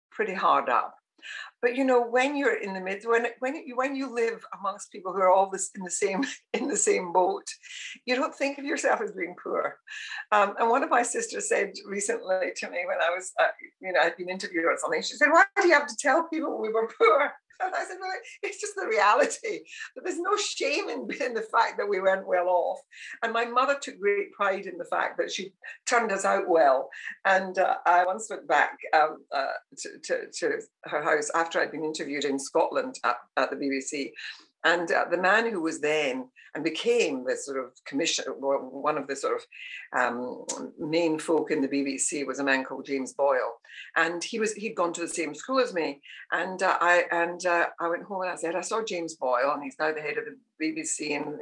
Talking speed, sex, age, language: 225 wpm, female, 60-79, English